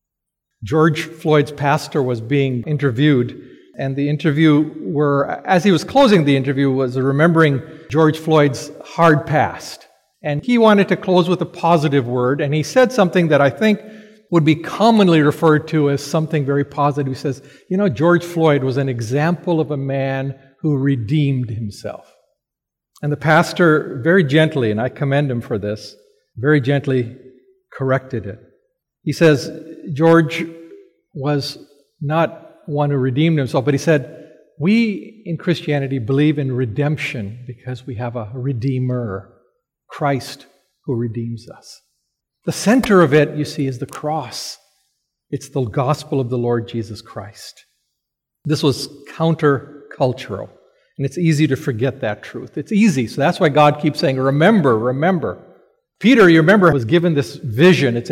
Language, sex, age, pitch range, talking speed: English, male, 50-69, 135-165 Hz, 155 wpm